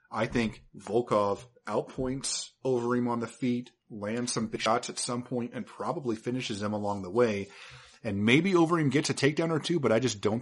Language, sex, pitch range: English, male, 105-130 Hz